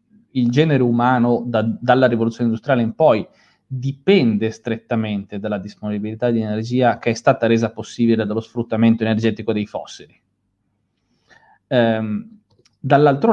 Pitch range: 110-130 Hz